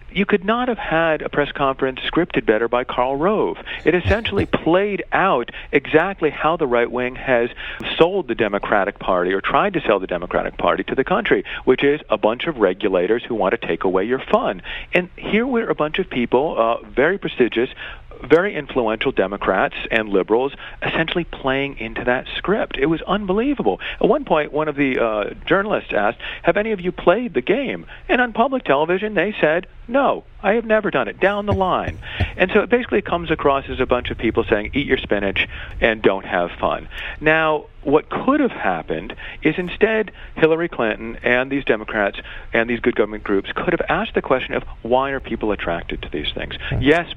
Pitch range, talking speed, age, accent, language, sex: 115-180 Hz, 195 wpm, 50-69, American, English, male